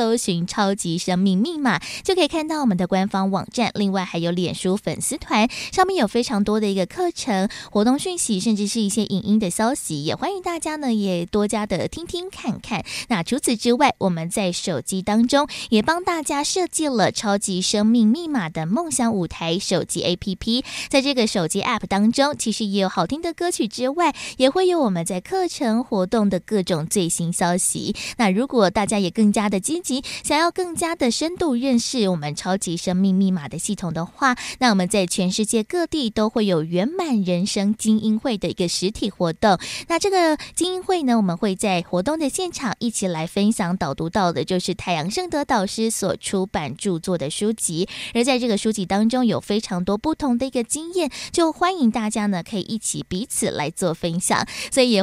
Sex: female